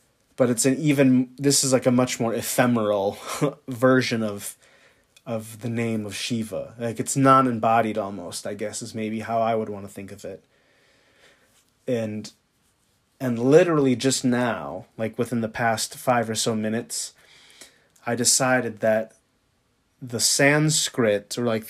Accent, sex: American, male